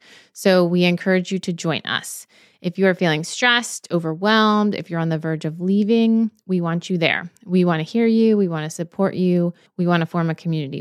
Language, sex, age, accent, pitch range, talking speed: English, female, 30-49, American, 175-215 Hz, 220 wpm